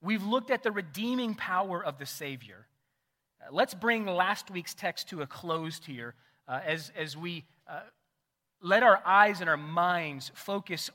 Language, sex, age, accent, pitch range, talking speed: English, male, 30-49, American, 150-255 Hz, 170 wpm